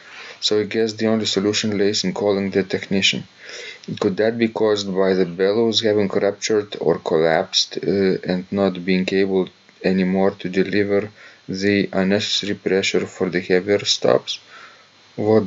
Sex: male